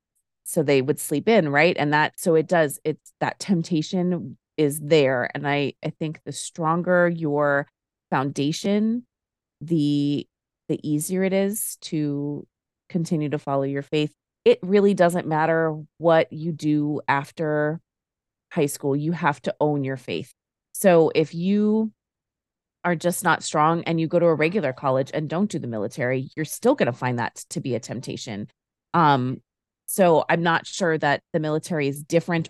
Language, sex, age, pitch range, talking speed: English, female, 30-49, 145-170 Hz, 165 wpm